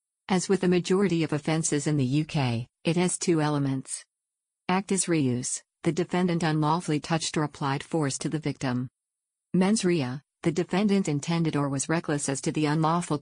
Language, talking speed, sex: English, 170 wpm, female